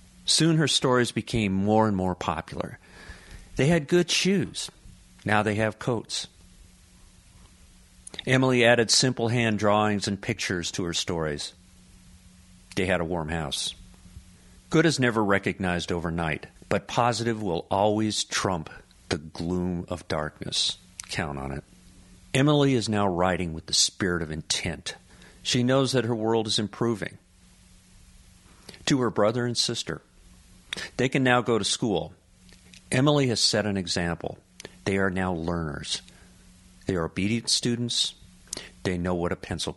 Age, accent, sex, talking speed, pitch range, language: 50-69, American, male, 140 wpm, 90-110 Hz, English